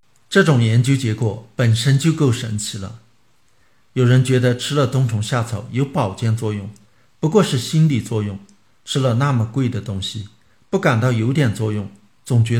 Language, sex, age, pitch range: Chinese, male, 50-69, 110-140 Hz